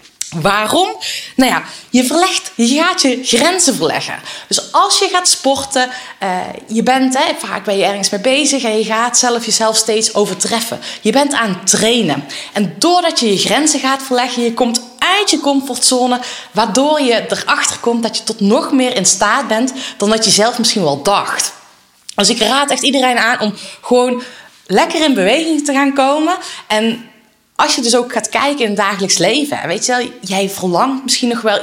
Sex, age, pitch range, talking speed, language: female, 20-39, 210-280 Hz, 190 wpm, Dutch